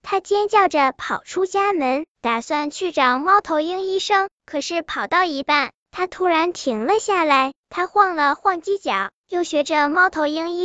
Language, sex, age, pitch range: Chinese, male, 10-29, 275-360 Hz